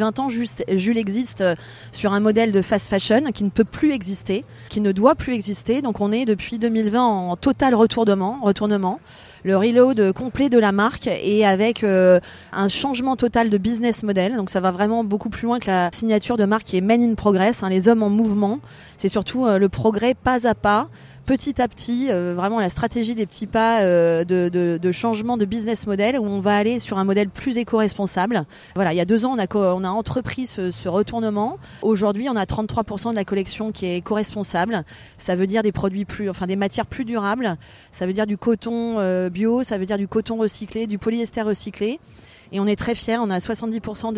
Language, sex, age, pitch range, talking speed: French, female, 30-49, 195-230 Hz, 215 wpm